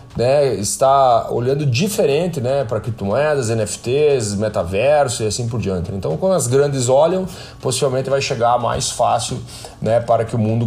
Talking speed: 155 wpm